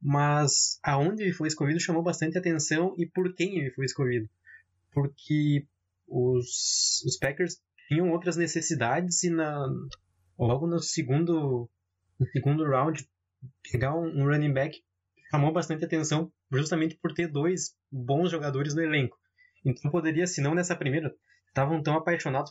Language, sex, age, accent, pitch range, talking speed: Portuguese, male, 20-39, Brazilian, 135-175 Hz, 135 wpm